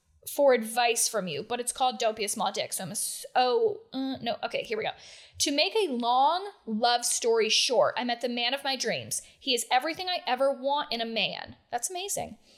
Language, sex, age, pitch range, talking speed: English, female, 10-29, 245-300 Hz, 225 wpm